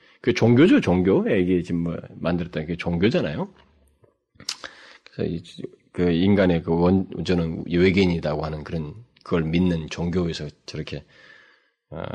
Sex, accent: male, native